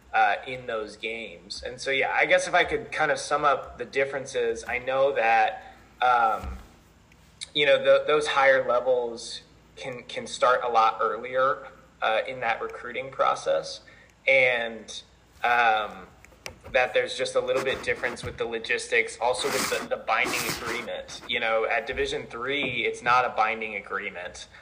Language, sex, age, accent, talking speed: English, male, 20-39, American, 160 wpm